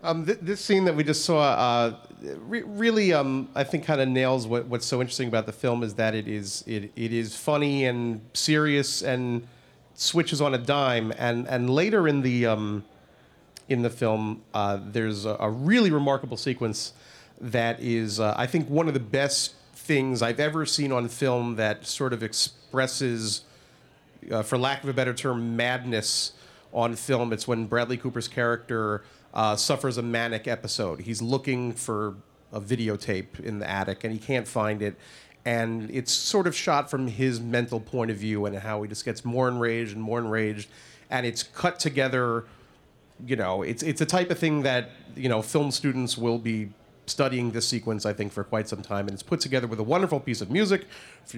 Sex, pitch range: male, 110-135 Hz